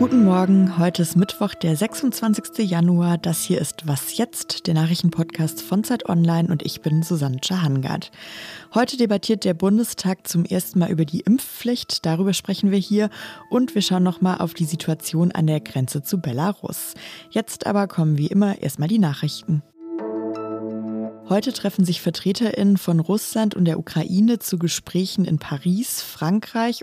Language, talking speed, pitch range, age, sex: German, 160 wpm, 160-210 Hz, 20-39, female